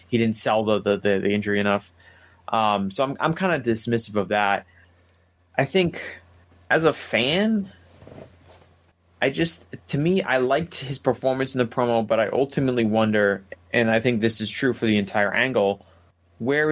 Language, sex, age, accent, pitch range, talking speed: English, male, 30-49, American, 100-130 Hz, 170 wpm